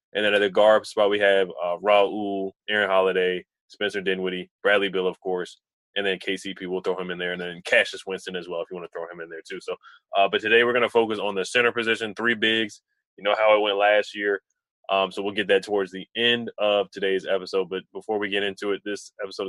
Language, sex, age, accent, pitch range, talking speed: English, male, 20-39, American, 95-110 Hz, 250 wpm